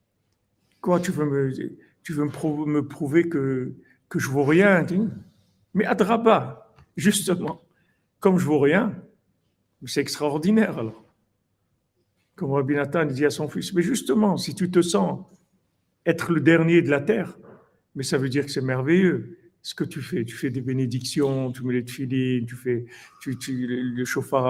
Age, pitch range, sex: 60-79, 125-180 Hz, male